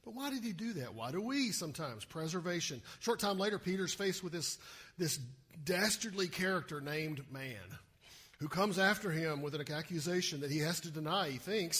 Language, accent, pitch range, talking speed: English, American, 150-200 Hz, 195 wpm